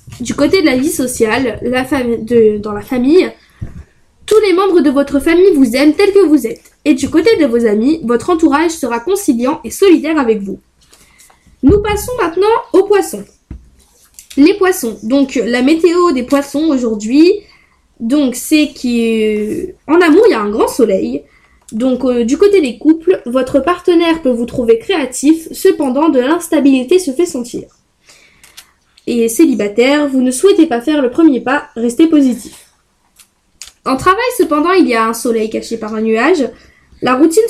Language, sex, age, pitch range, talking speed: French, female, 10-29, 240-340 Hz, 165 wpm